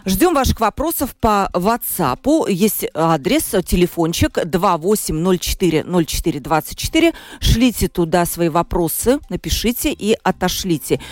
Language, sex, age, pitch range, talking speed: Russian, female, 40-59, 170-235 Hz, 85 wpm